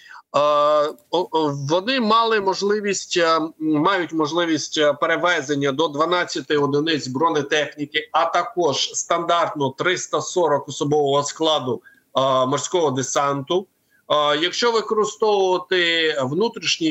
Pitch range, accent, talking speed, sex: 150-190 Hz, native, 80 wpm, male